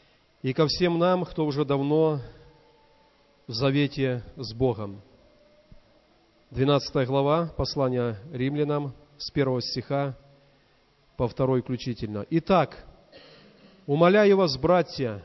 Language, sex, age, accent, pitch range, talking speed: Russian, male, 40-59, native, 130-165 Hz, 100 wpm